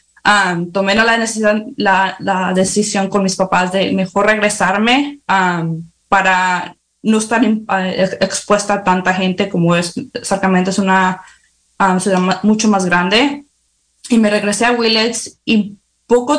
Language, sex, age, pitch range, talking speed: English, female, 20-39, 190-220 Hz, 150 wpm